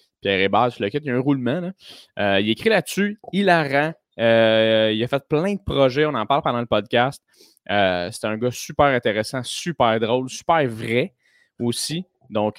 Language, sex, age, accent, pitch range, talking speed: French, male, 20-39, Canadian, 110-145 Hz, 175 wpm